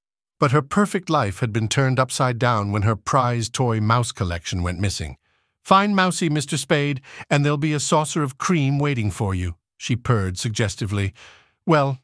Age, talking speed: 50-69, 175 wpm